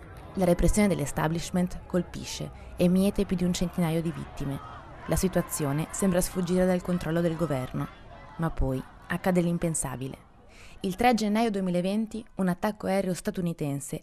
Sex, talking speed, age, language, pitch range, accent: female, 135 wpm, 20-39, Italian, 155-185 Hz, native